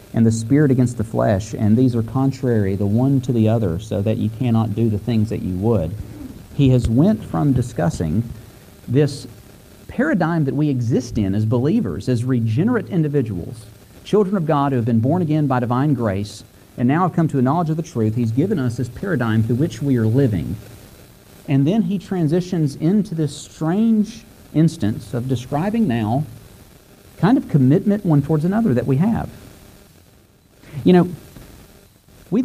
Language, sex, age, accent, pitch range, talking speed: English, male, 50-69, American, 110-140 Hz, 175 wpm